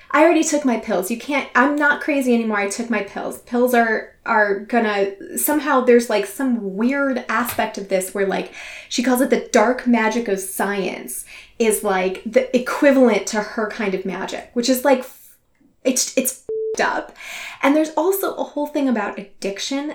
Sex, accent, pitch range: female, American, 195-250 Hz